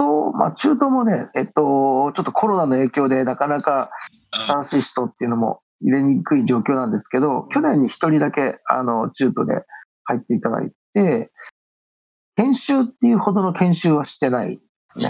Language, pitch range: Japanese, 130-185 Hz